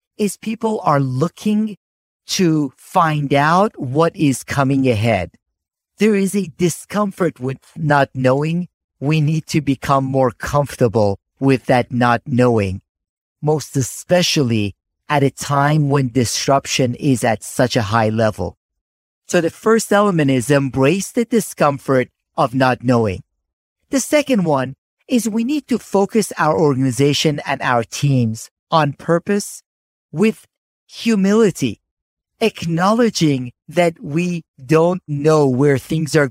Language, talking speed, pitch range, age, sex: English, 125 wpm, 130-175 Hz, 50-69, male